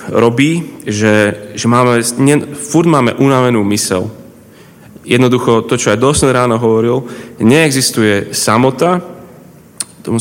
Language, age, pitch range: Slovak, 30-49, 110-140 Hz